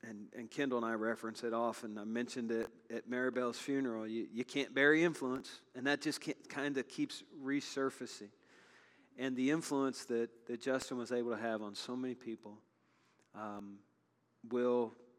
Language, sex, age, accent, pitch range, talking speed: English, male, 40-59, American, 105-125 Hz, 165 wpm